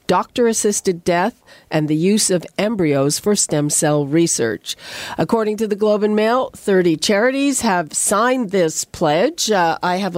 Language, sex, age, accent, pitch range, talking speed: English, female, 50-69, American, 160-215 Hz, 155 wpm